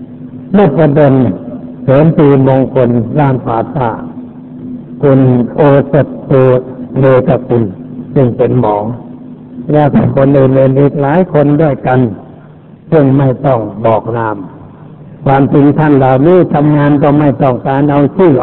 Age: 60-79